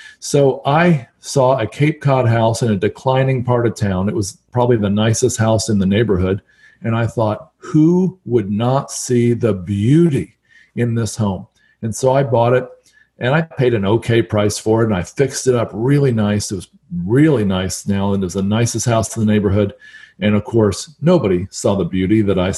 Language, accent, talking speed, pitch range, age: English, American, 205 wpm, 105-125 Hz, 40-59